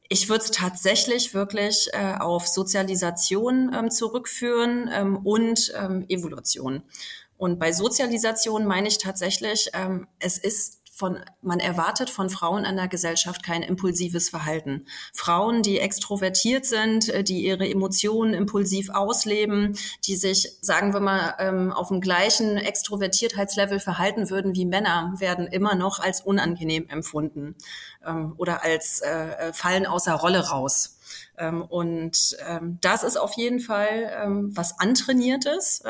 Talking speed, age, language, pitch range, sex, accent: 125 wpm, 30-49, German, 180-220 Hz, female, German